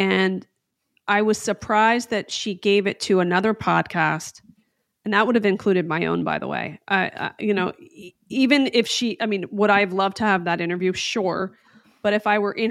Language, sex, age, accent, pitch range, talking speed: English, female, 30-49, American, 185-225 Hz, 215 wpm